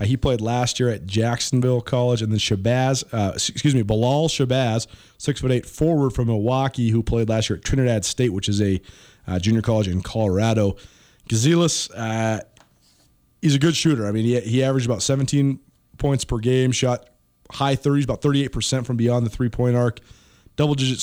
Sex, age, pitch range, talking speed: male, 30-49, 110-135 Hz, 175 wpm